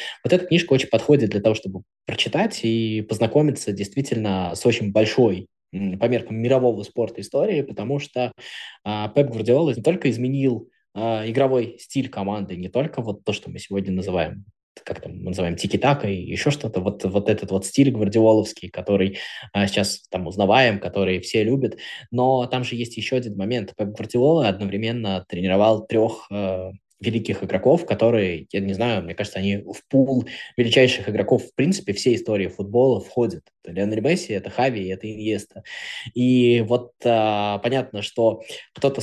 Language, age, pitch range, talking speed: Russian, 20-39, 100-125 Hz, 155 wpm